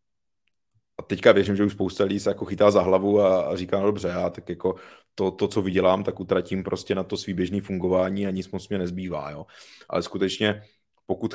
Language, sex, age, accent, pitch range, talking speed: Czech, male, 30-49, native, 90-100 Hz, 215 wpm